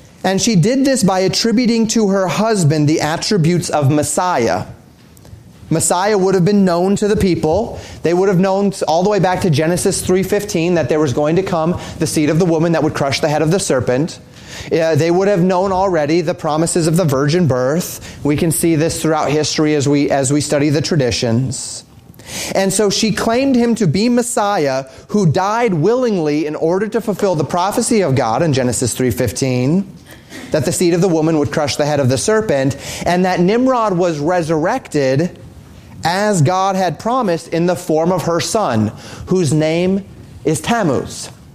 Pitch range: 150-190 Hz